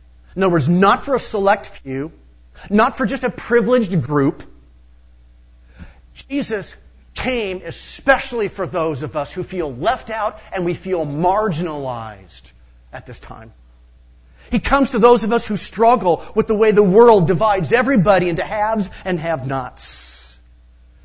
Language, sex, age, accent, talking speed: English, male, 40-59, American, 145 wpm